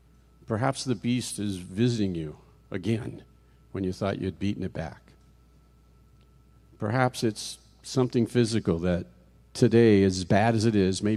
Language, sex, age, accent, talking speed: English, male, 50-69, American, 140 wpm